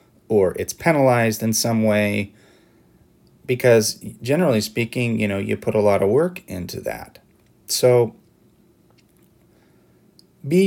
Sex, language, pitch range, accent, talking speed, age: male, English, 100-125 Hz, American, 120 wpm, 30-49